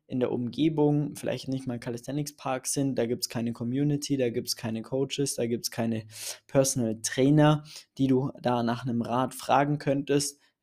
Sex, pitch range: male, 120-135 Hz